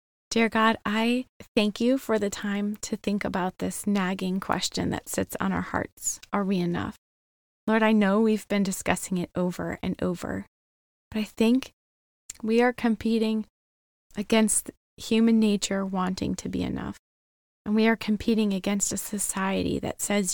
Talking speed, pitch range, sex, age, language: 160 wpm, 190-225 Hz, female, 20-39, English